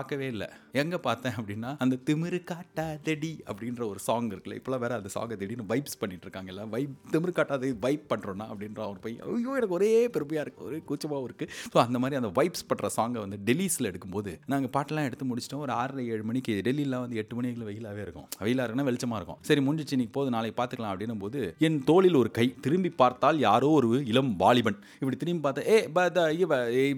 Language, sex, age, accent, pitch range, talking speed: Tamil, male, 30-49, native, 115-175 Hz, 70 wpm